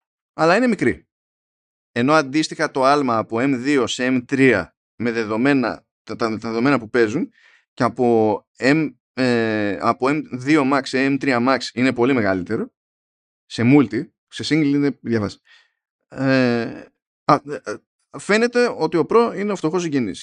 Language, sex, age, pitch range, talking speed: Greek, male, 20-39, 115-160 Hz, 140 wpm